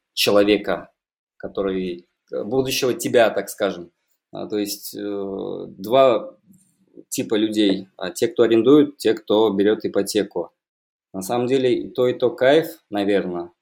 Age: 20-39